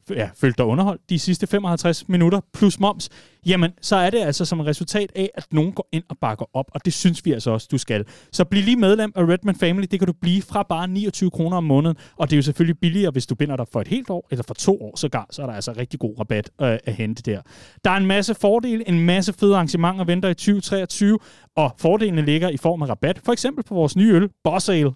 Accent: native